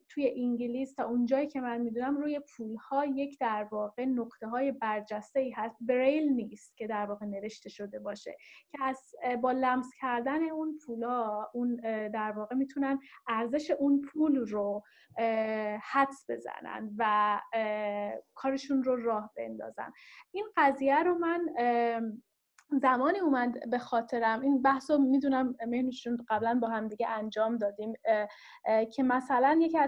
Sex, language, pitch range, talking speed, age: female, Persian, 220-275 Hz, 140 wpm, 10-29